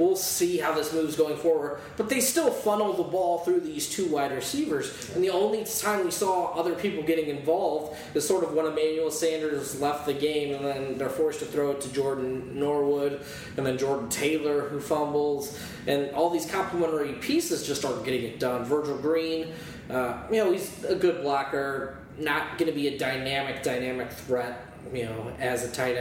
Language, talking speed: English, 195 wpm